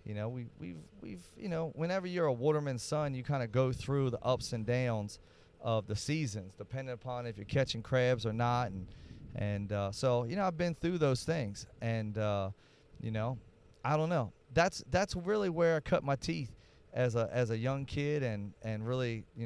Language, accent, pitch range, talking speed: English, American, 115-145 Hz, 210 wpm